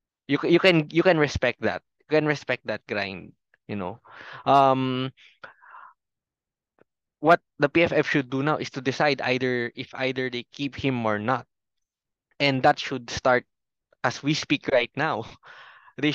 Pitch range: 130-150 Hz